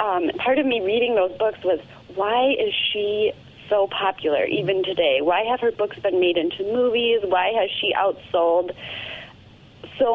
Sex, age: female, 30-49